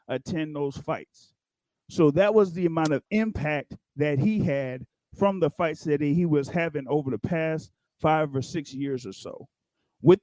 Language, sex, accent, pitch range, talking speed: English, male, American, 140-185 Hz, 175 wpm